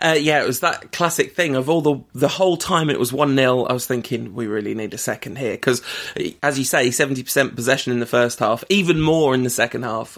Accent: British